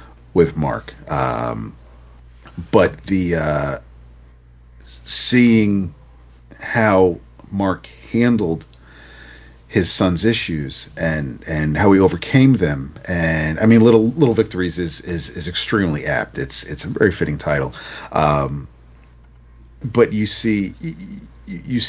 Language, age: English, 40-59